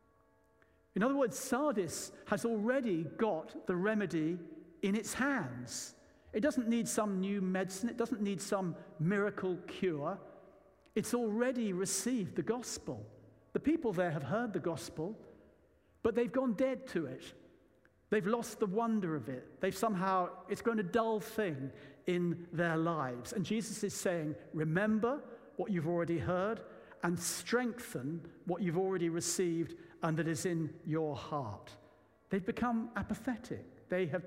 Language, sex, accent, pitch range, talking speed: English, male, British, 160-215 Hz, 145 wpm